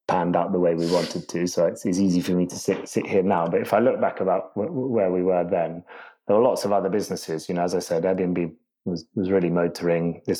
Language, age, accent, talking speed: English, 30-49, British, 265 wpm